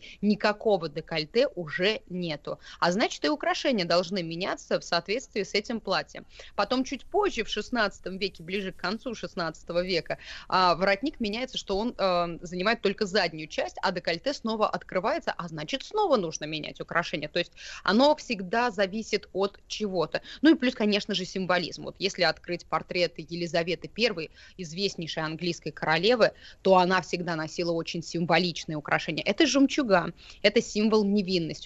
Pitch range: 170-215 Hz